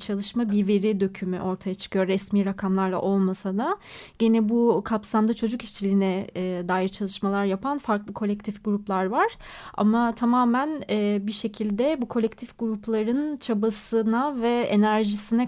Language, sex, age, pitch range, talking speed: Turkish, female, 30-49, 200-230 Hz, 125 wpm